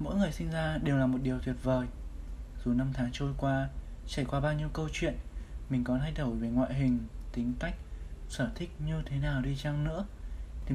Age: 20-39